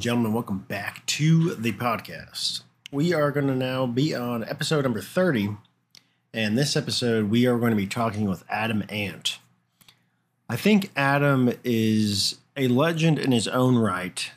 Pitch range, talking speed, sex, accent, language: 105-140 Hz, 160 wpm, male, American, English